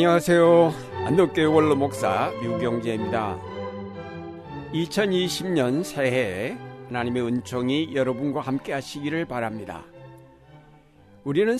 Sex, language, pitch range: male, Korean, 120-150 Hz